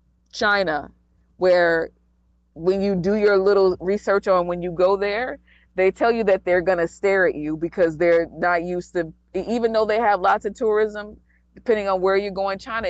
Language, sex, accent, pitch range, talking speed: English, female, American, 170-220 Hz, 185 wpm